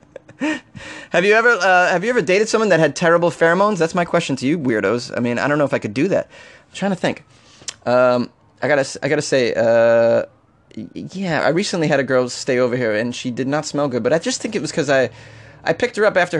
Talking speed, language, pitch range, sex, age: 250 wpm, English, 120-185 Hz, male, 20-39